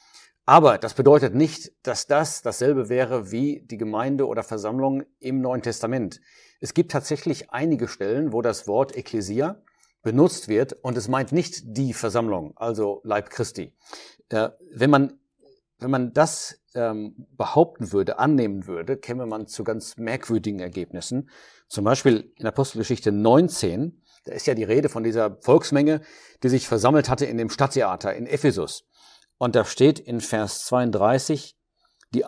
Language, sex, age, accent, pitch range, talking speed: German, male, 50-69, German, 110-145 Hz, 150 wpm